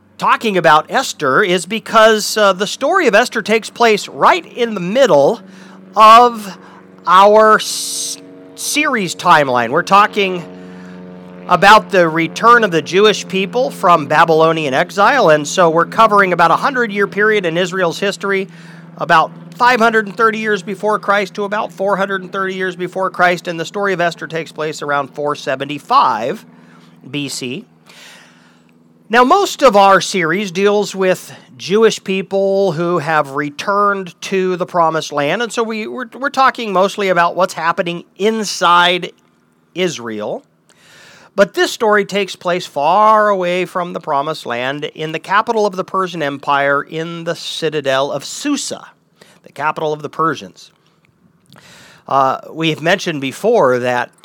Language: English